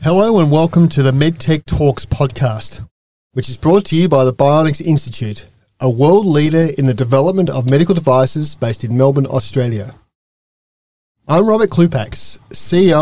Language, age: English, 40-59